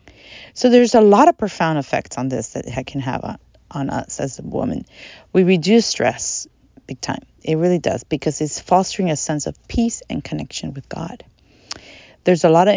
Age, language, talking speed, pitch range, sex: 30-49, English, 195 wpm, 150-185 Hz, female